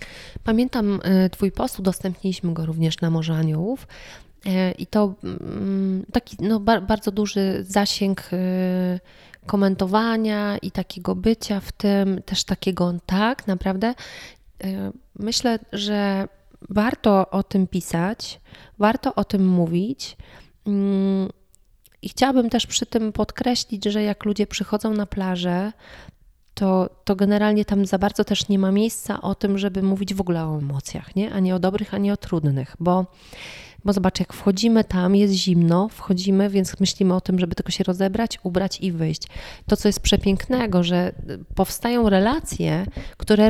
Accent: native